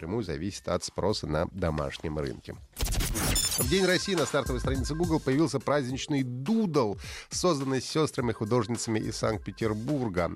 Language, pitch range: Russian, 90-135 Hz